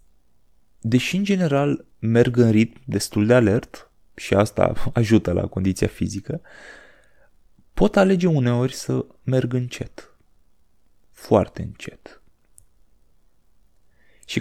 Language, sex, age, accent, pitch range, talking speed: Romanian, male, 20-39, native, 100-130 Hz, 100 wpm